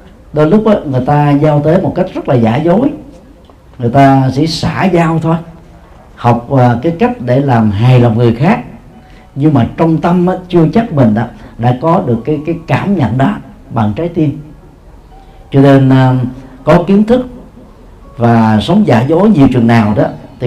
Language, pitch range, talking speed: Vietnamese, 120-160 Hz, 180 wpm